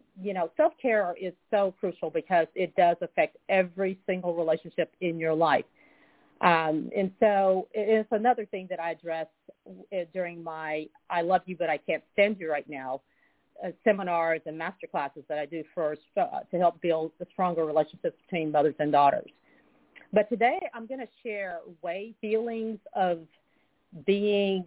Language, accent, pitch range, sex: English, American, 170-215 Hz, female